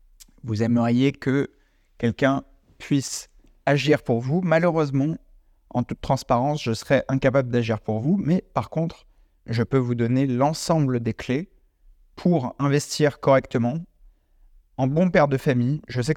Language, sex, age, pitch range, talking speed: French, male, 30-49, 115-140 Hz, 140 wpm